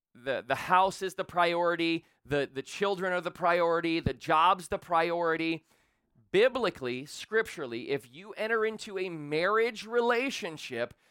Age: 30-49